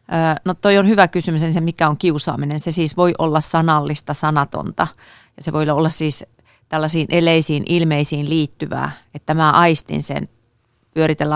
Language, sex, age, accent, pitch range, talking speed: Finnish, female, 30-49, native, 140-160 Hz, 160 wpm